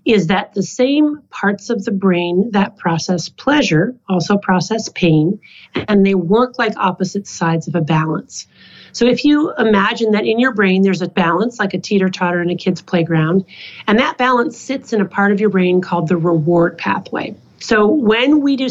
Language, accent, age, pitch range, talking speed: English, American, 40-59, 180-225 Hz, 190 wpm